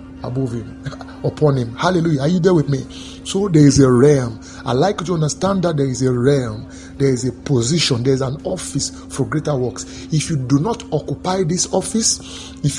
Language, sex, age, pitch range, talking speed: English, male, 30-49, 115-165 Hz, 200 wpm